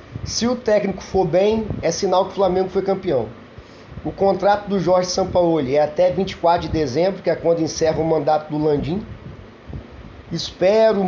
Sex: male